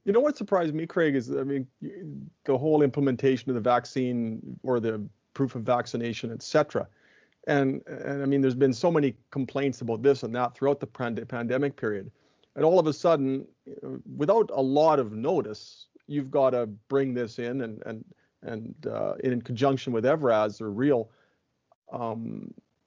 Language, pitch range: English, 125-150 Hz